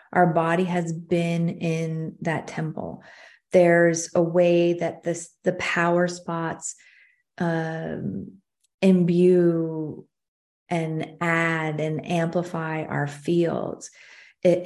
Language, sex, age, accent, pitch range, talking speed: English, female, 30-49, American, 165-180 Hz, 95 wpm